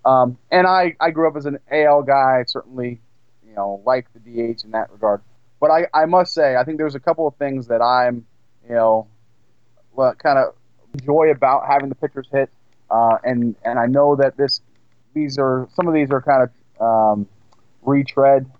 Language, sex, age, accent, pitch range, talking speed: English, male, 30-49, American, 120-145 Hz, 195 wpm